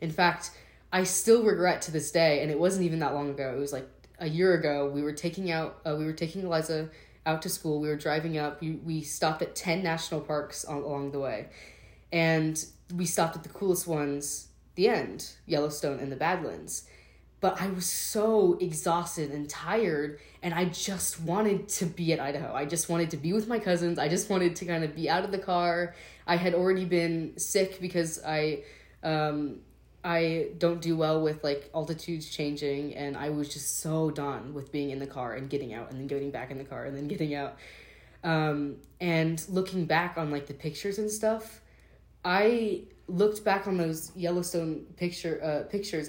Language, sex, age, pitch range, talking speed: English, female, 20-39, 150-180 Hz, 200 wpm